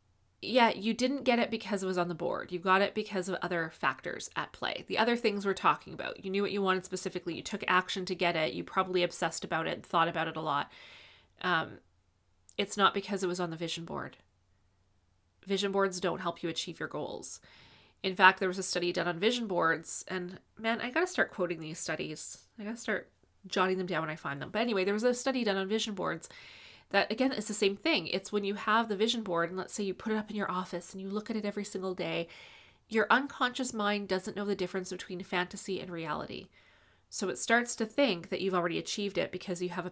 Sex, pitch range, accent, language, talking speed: female, 170-210 Hz, American, English, 245 wpm